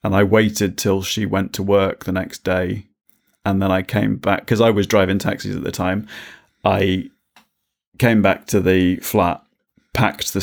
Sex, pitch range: male, 95-105 Hz